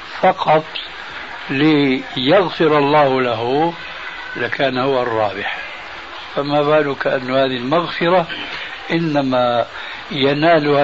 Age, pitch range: 60-79, 125-155 Hz